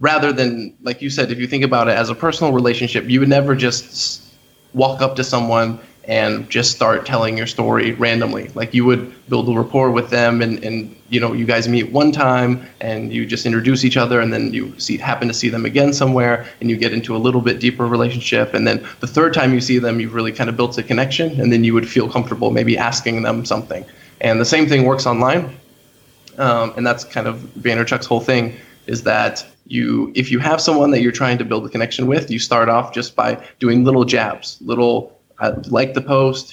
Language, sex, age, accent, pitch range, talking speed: English, male, 20-39, American, 115-130 Hz, 225 wpm